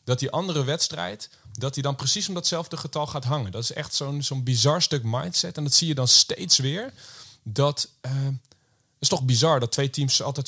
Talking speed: 210 wpm